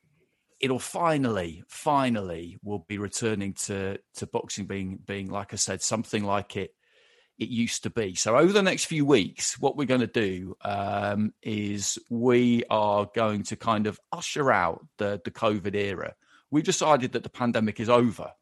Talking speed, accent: 170 wpm, British